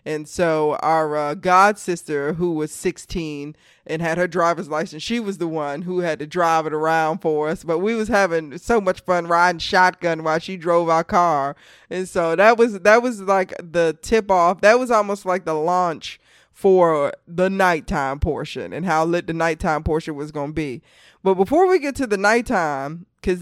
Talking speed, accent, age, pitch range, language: 200 wpm, American, 20-39, 155-185 Hz, English